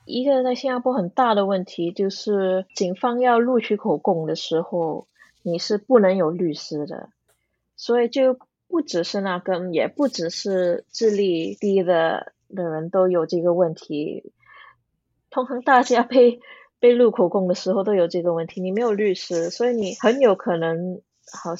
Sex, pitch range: female, 180-240 Hz